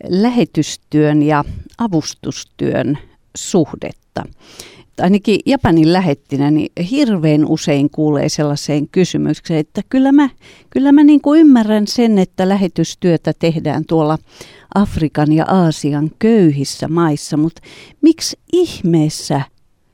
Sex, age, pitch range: female, 50-69, 155-220 Hz